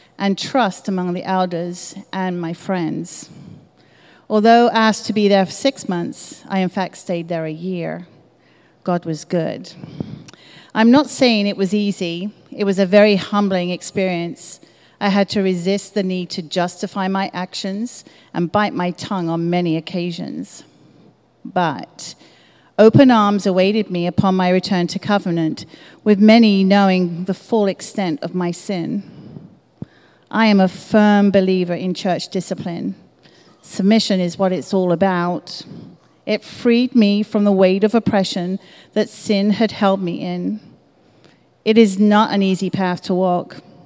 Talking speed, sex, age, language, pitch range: 150 wpm, female, 40-59, English, 180-210 Hz